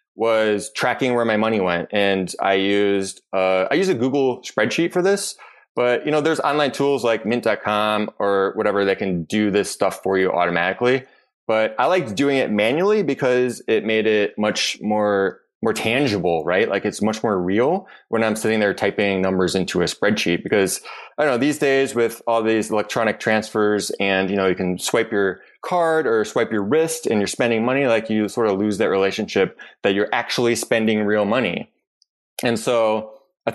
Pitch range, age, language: 100-120 Hz, 20-39, English